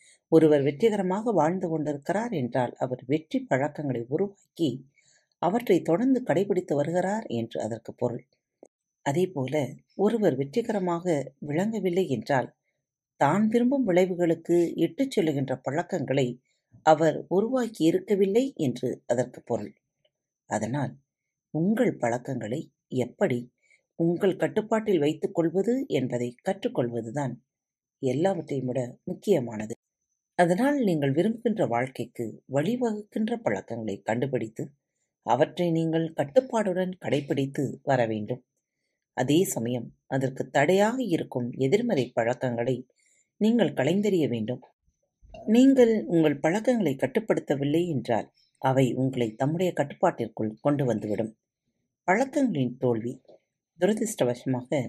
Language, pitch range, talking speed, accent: Tamil, 130-190 Hz, 90 wpm, native